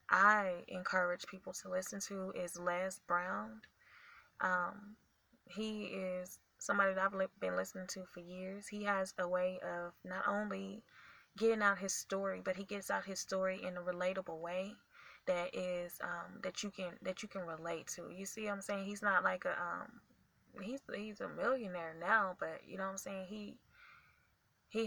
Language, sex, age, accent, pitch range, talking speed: English, female, 10-29, American, 180-195 Hz, 180 wpm